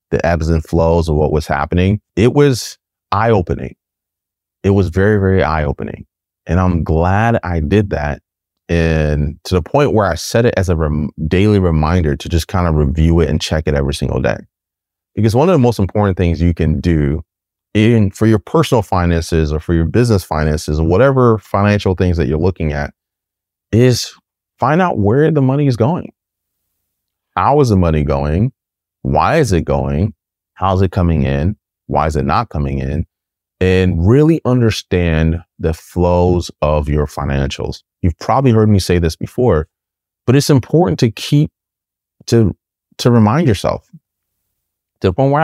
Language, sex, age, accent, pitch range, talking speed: English, male, 30-49, American, 80-115 Hz, 170 wpm